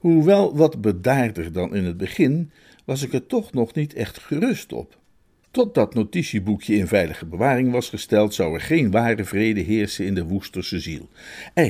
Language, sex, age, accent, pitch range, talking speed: Dutch, male, 50-69, Dutch, 100-140 Hz, 175 wpm